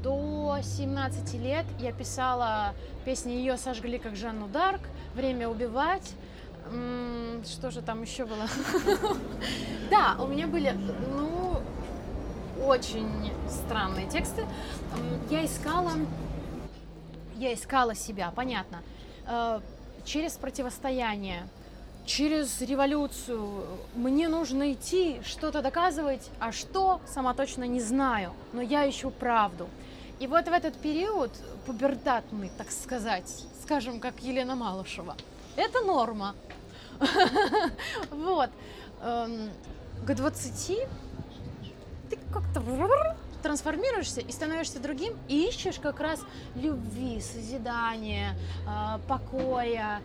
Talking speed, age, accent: 95 wpm, 20-39, native